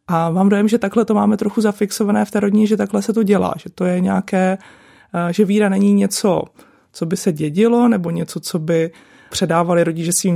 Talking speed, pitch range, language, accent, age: 210 wpm, 165-195 Hz, Czech, native, 30-49